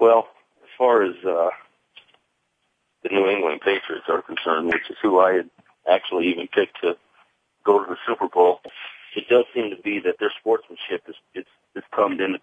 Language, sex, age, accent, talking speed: English, male, 50-69, American, 185 wpm